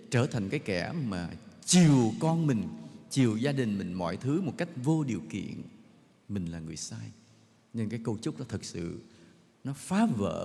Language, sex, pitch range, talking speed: English, male, 105-155 Hz, 190 wpm